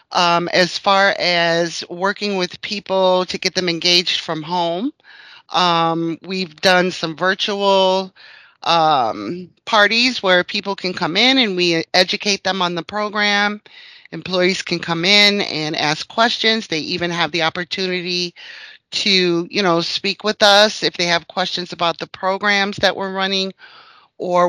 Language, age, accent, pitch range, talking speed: English, 30-49, American, 170-195 Hz, 150 wpm